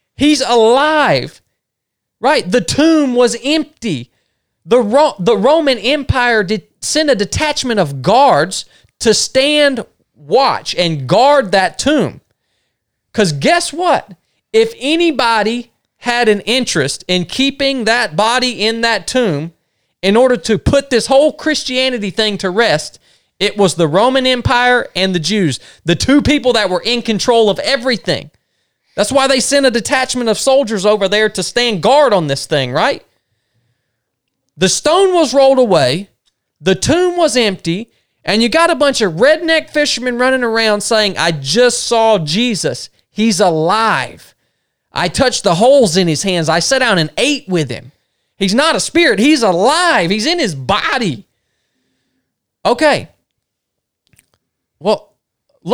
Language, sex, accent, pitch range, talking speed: English, male, American, 190-270 Hz, 145 wpm